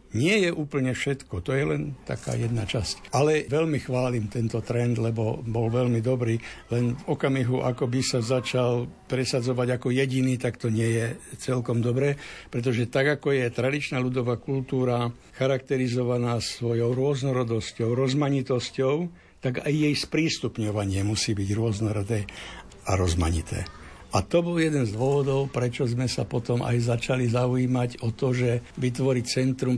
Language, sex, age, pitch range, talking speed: Slovak, male, 60-79, 120-140 Hz, 145 wpm